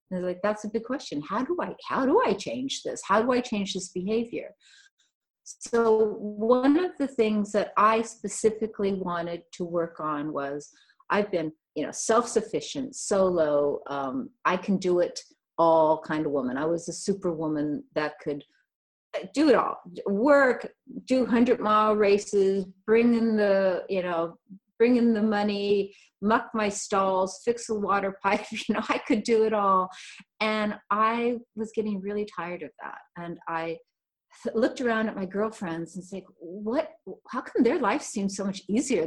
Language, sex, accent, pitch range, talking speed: English, female, American, 175-225 Hz, 170 wpm